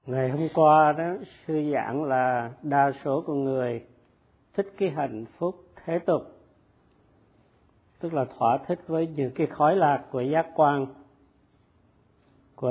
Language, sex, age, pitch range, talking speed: Vietnamese, male, 50-69, 130-160 Hz, 140 wpm